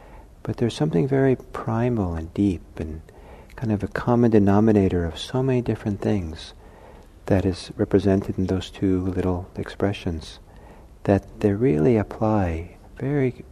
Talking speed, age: 140 wpm, 60-79